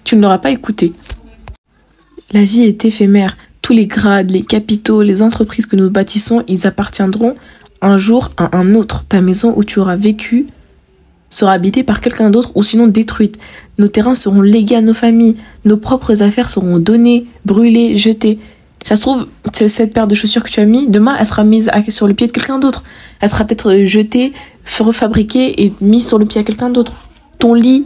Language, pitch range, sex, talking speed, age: French, 205-240 Hz, female, 195 wpm, 20-39